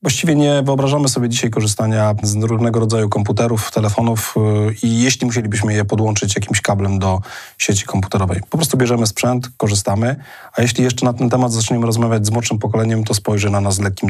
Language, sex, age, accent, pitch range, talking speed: Polish, male, 30-49, native, 105-125 Hz, 185 wpm